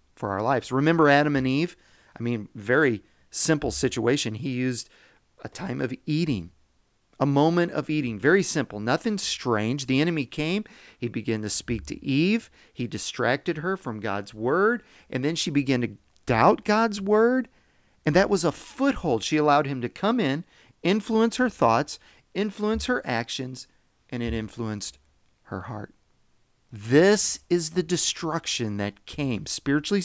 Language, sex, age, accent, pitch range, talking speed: English, male, 40-59, American, 120-185 Hz, 155 wpm